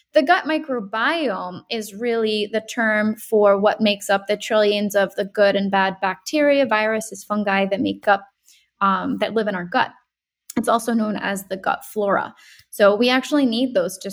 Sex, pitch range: female, 200-245 Hz